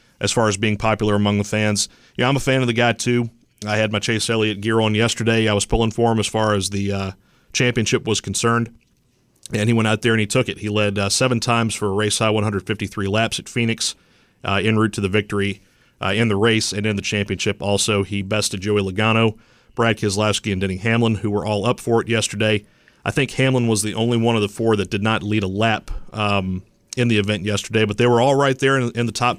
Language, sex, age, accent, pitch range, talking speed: English, male, 40-59, American, 105-115 Hz, 245 wpm